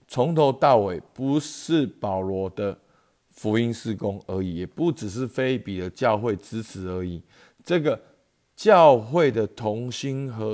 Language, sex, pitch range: Chinese, male, 90-115 Hz